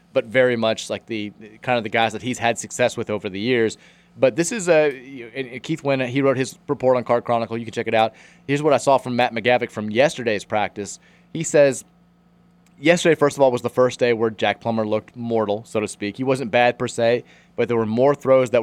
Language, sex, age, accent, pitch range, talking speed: English, male, 30-49, American, 115-140 Hz, 240 wpm